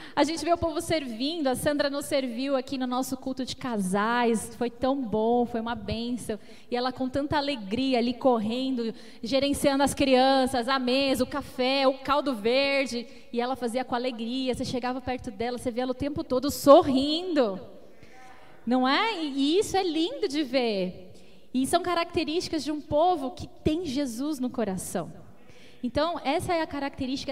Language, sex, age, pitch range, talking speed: Portuguese, female, 10-29, 240-305 Hz, 175 wpm